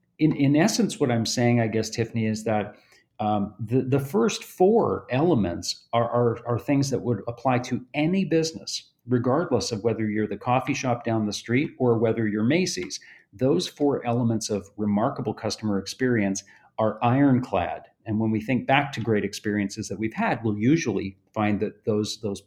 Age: 50-69